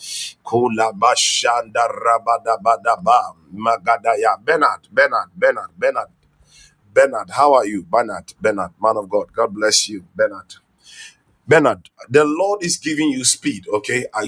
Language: English